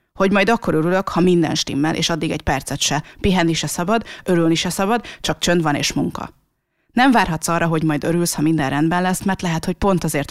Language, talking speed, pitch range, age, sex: Hungarian, 220 wpm, 155-185 Hz, 30-49, female